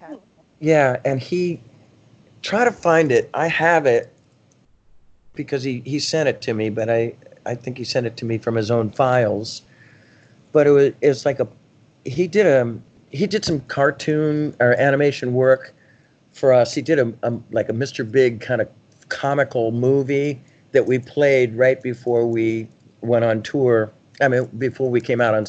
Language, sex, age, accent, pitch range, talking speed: English, male, 50-69, American, 115-140 Hz, 180 wpm